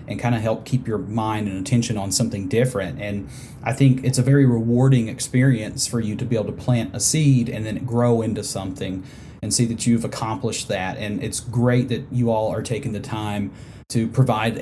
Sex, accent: male, American